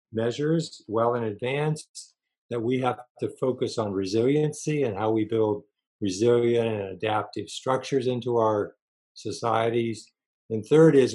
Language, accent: English, American